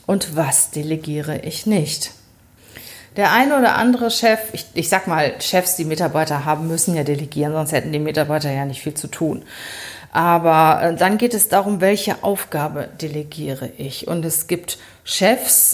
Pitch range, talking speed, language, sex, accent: 165-225 Hz, 165 wpm, German, female, German